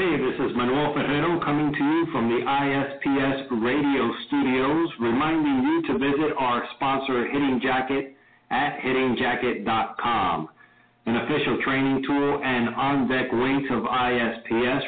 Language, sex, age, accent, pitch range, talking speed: English, male, 50-69, American, 120-145 Hz, 130 wpm